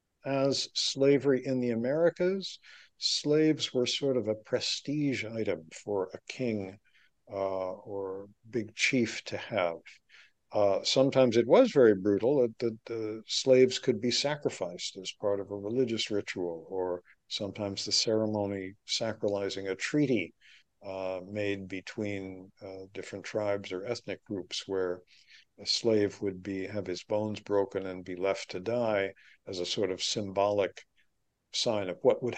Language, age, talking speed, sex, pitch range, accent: English, 60-79, 145 wpm, male, 100-125 Hz, American